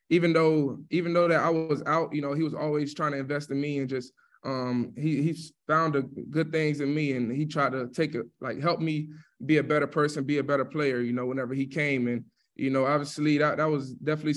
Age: 20-39